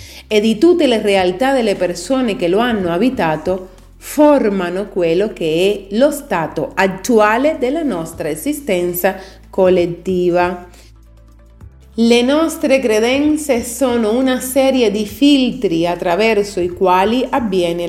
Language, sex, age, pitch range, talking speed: Italian, female, 30-49, 175-255 Hz, 115 wpm